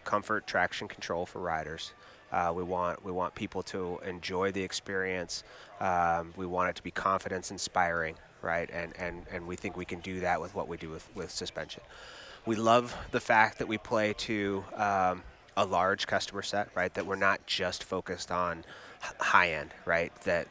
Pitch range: 90-100 Hz